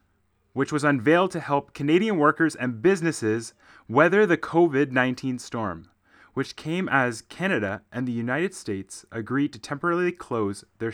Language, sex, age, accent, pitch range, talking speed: English, male, 30-49, American, 105-155 Hz, 145 wpm